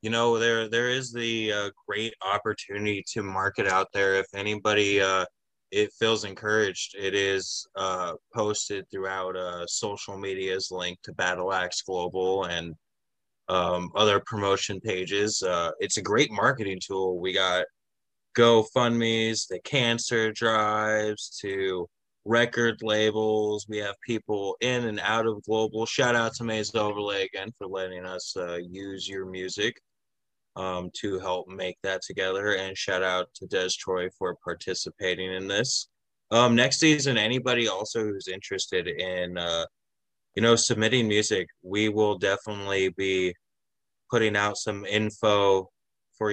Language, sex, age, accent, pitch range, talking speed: English, male, 20-39, American, 95-110 Hz, 145 wpm